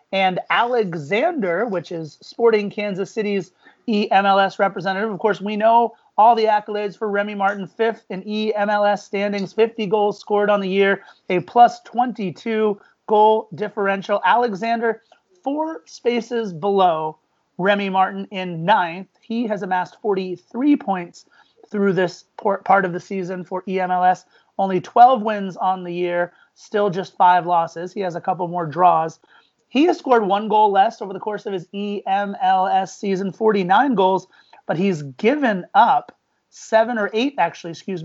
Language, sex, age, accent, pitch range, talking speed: English, male, 30-49, American, 185-225 Hz, 150 wpm